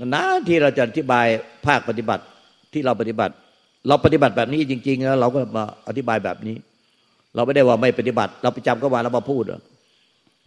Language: Thai